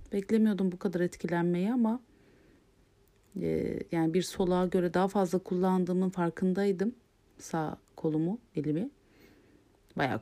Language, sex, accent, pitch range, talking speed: Turkish, female, native, 140-200 Hz, 105 wpm